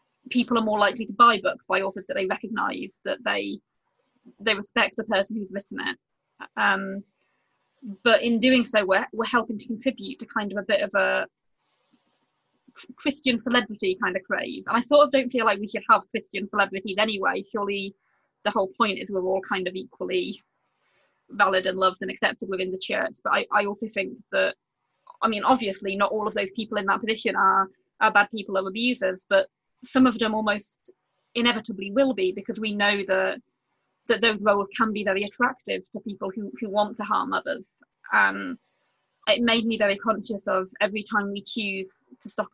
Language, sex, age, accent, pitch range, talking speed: English, female, 20-39, British, 195-230 Hz, 195 wpm